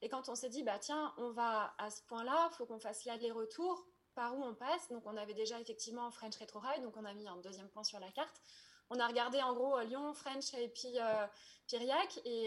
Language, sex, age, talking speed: French, female, 20-39, 250 wpm